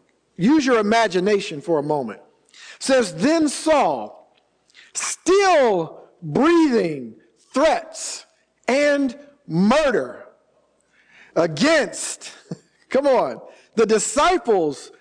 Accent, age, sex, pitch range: American, 50-69, male, 205-305 Hz